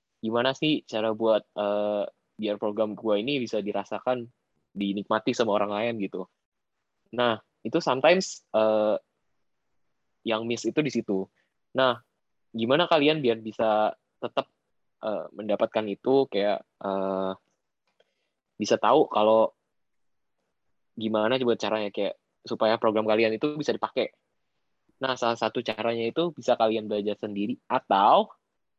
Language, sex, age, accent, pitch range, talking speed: Indonesian, male, 10-29, native, 105-125 Hz, 125 wpm